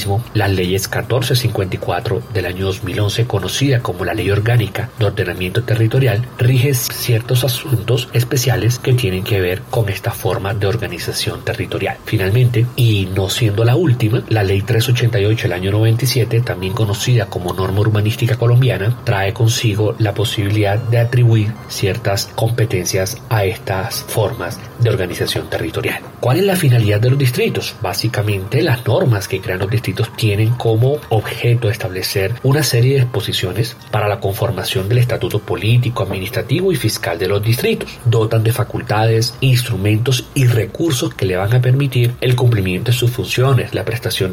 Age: 40-59